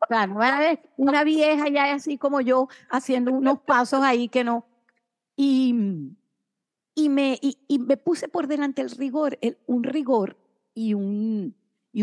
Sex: female